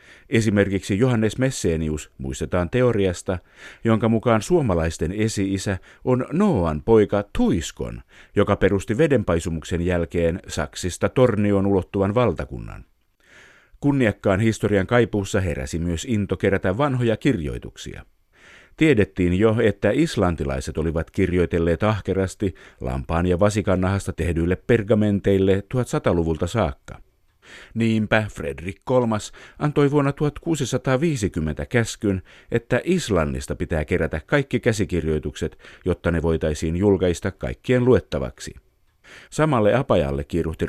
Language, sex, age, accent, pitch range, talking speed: Finnish, male, 50-69, native, 85-115 Hz, 100 wpm